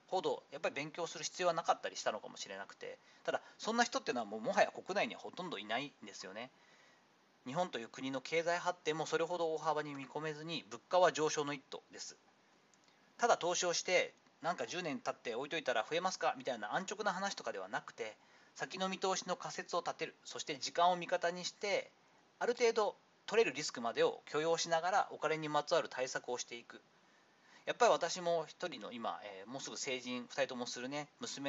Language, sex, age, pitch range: Japanese, male, 40-59, 155-190 Hz